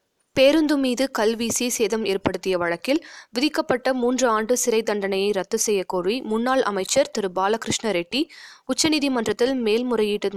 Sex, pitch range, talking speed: female, 195-245 Hz, 115 wpm